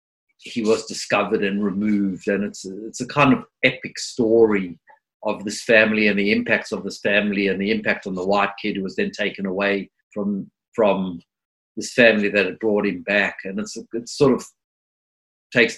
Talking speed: 195 wpm